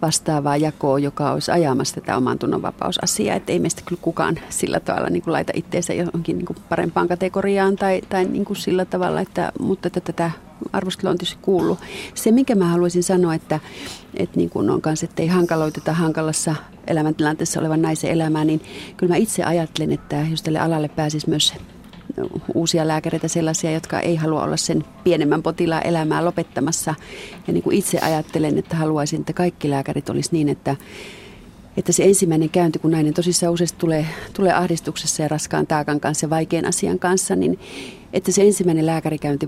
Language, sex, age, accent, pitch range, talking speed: Finnish, female, 40-59, native, 155-180 Hz, 170 wpm